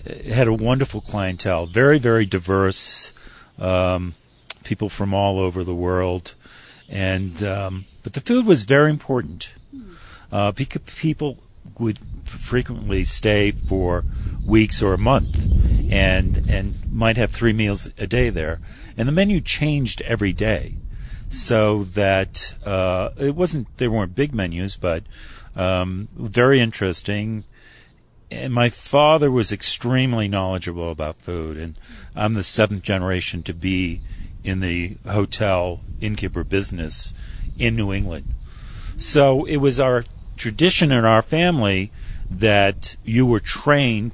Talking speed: 130 wpm